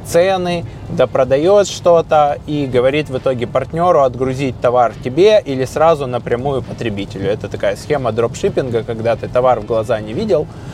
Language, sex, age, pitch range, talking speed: Russian, male, 20-39, 120-145 Hz, 150 wpm